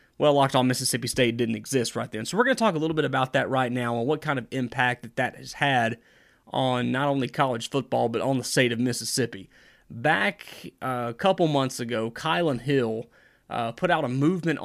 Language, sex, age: English, male, 30-49